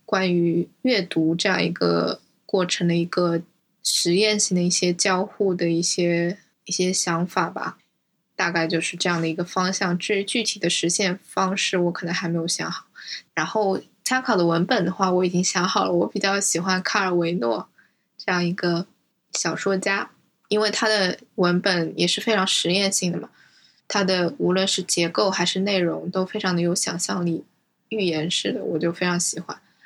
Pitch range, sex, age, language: 170-195 Hz, female, 10-29, English